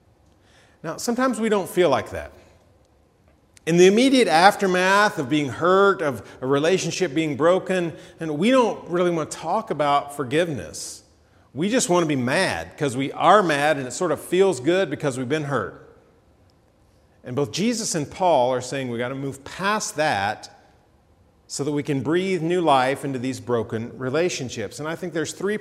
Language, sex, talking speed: English, male, 180 wpm